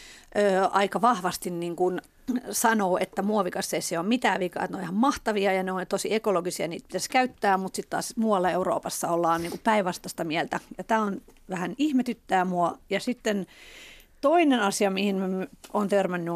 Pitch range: 175-225 Hz